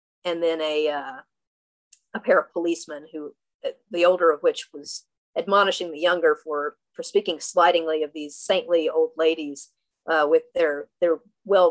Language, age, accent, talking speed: English, 40-59, American, 160 wpm